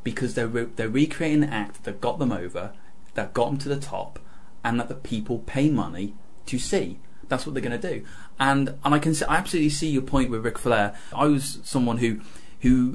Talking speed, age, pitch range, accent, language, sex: 225 wpm, 20-39, 105-135 Hz, British, English, male